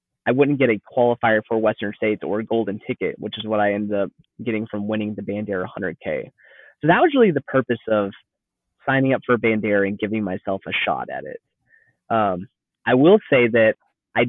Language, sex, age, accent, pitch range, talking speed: English, male, 20-39, American, 110-130 Hz, 200 wpm